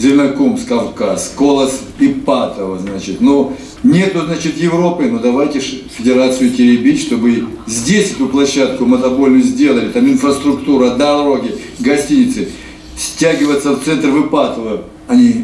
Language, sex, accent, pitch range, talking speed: Russian, male, native, 100-170 Hz, 115 wpm